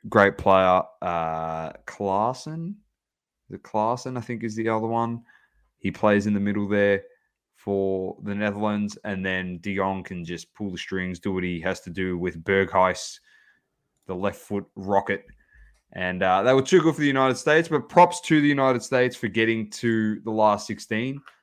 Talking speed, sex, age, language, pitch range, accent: 175 wpm, male, 20-39, English, 95-120 Hz, Australian